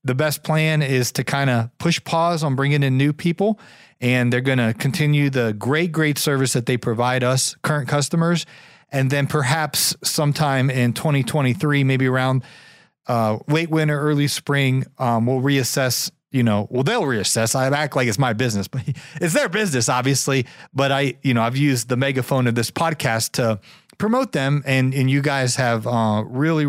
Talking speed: 185 wpm